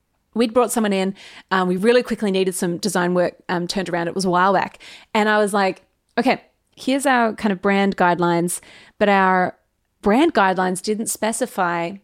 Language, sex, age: English, female, 30-49